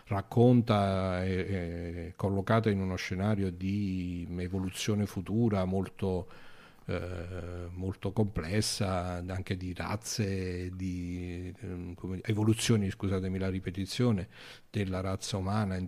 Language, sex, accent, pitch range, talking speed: Italian, male, native, 95-110 Hz, 110 wpm